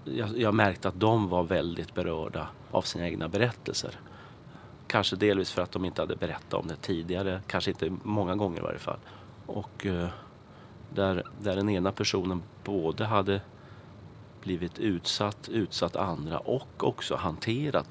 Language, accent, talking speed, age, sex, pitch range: English, Swedish, 145 wpm, 30-49, male, 90-110 Hz